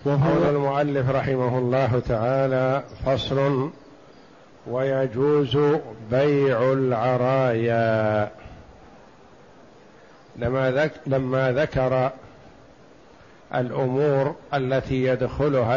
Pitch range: 125-145 Hz